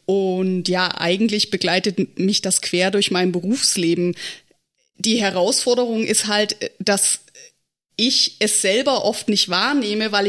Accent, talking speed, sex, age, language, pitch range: German, 130 wpm, female, 20-39, German, 195-235 Hz